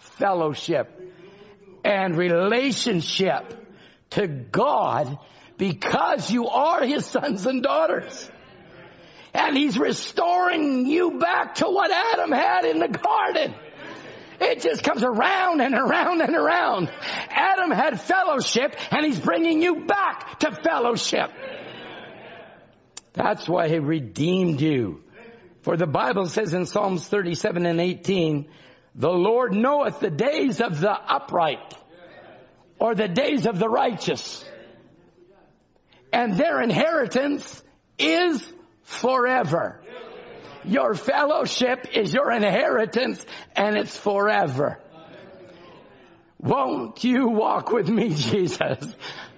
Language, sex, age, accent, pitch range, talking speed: English, male, 50-69, American, 180-285 Hz, 110 wpm